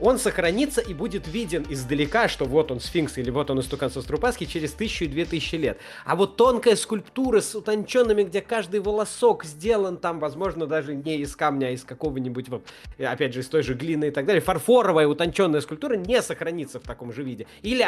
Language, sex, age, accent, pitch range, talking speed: Russian, male, 20-39, native, 145-200 Hz, 200 wpm